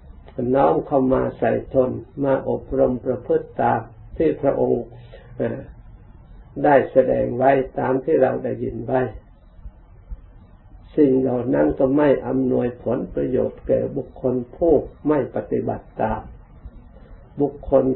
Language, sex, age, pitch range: Thai, male, 60-79, 90-135 Hz